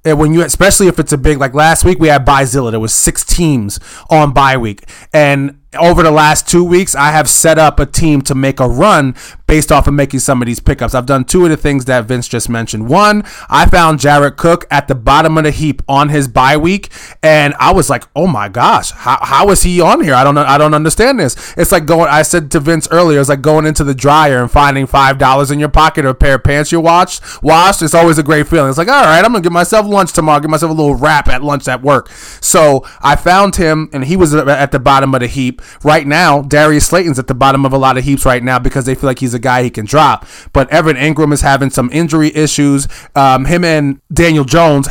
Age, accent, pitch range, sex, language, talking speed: 20-39, American, 135-160 Hz, male, English, 255 wpm